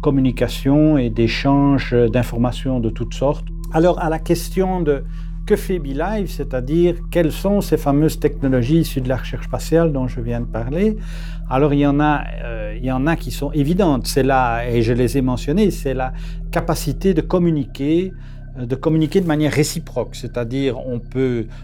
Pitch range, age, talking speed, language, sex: 125-165 Hz, 50-69, 175 wpm, French, male